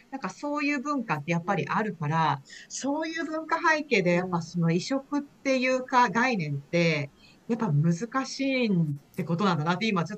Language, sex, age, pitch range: Japanese, female, 40-59, 160-230 Hz